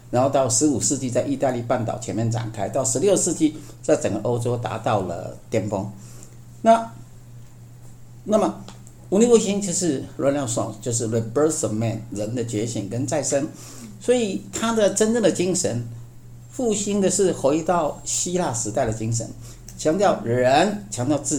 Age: 50-69